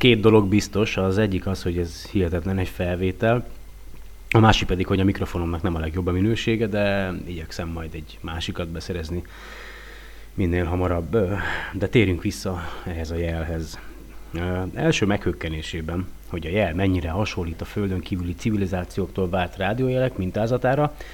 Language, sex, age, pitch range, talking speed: Hungarian, male, 30-49, 85-105 Hz, 140 wpm